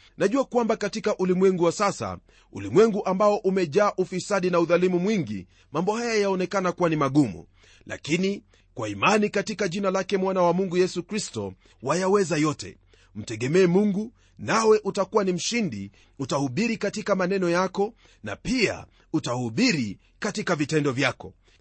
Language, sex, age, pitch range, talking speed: Swahili, male, 40-59, 125-200 Hz, 135 wpm